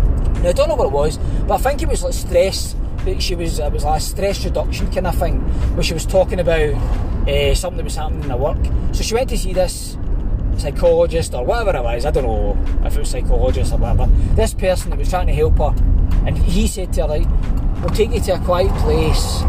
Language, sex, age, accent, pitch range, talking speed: English, male, 20-39, British, 65-95 Hz, 245 wpm